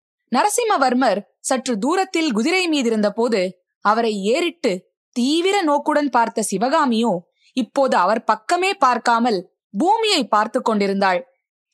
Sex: female